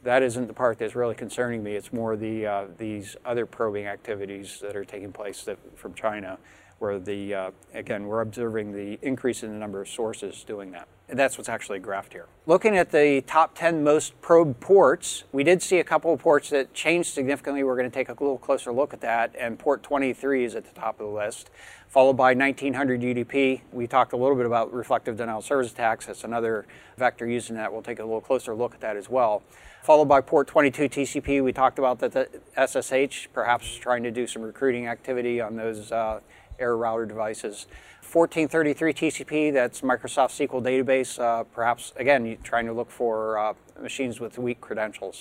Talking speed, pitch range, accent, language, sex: 205 wpm, 115-140 Hz, American, English, male